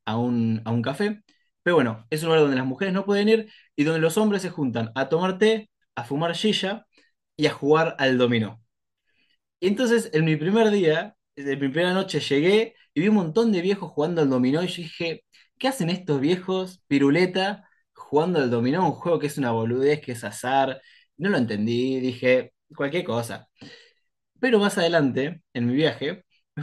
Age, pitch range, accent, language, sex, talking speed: 20-39, 130-190 Hz, Argentinian, Spanish, male, 195 wpm